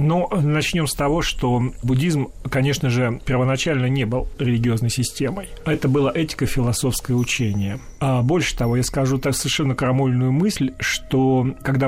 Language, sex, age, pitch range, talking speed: Russian, male, 40-59, 130-185 Hz, 145 wpm